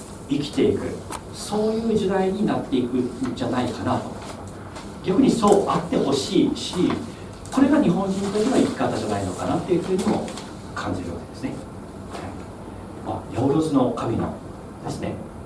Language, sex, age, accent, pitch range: Japanese, male, 40-59, native, 105-160 Hz